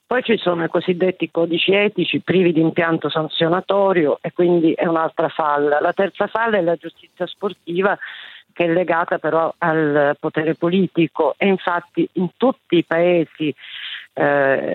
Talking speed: 150 wpm